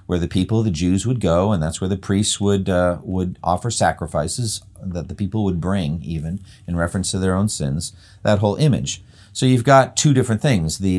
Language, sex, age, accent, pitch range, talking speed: English, male, 50-69, American, 95-130 Hz, 215 wpm